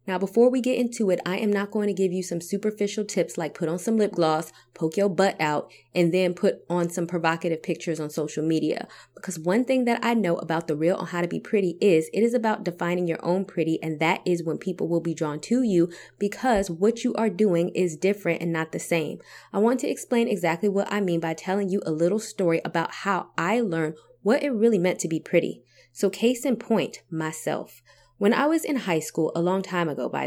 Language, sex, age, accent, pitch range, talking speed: English, female, 20-39, American, 165-210 Hz, 240 wpm